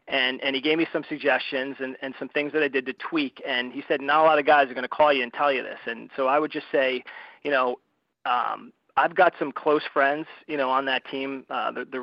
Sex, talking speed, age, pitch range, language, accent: male, 275 wpm, 40-59, 130-150 Hz, English, American